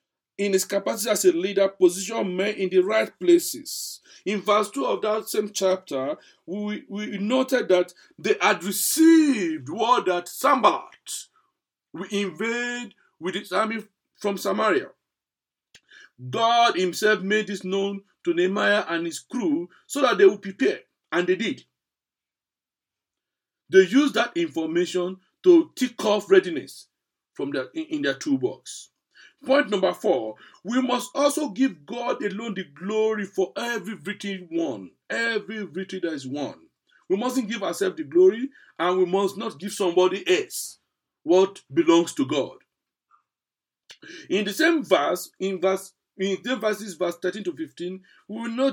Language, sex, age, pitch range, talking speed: English, male, 50-69, 185-265 Hz, 150 wpm